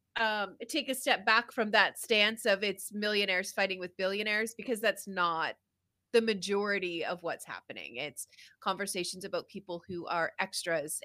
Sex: female